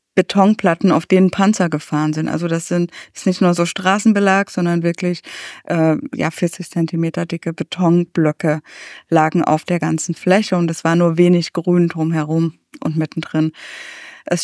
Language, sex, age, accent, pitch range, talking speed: German, female, 20-39, German, 170-195 Hz, 160 wpm